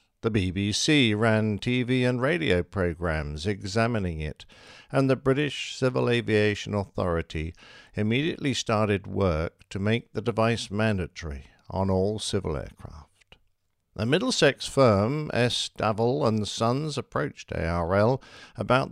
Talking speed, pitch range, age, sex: 115 wpm, 90-115 Hz, 60-79, male